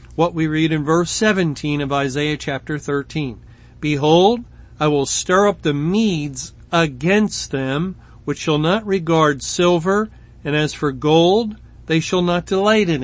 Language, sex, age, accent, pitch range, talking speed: English, male, 50-69, American, 150-190 Hz, 150 wpm